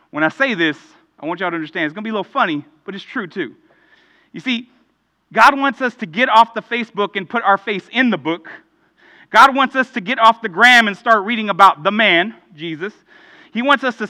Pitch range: 215-270 Hz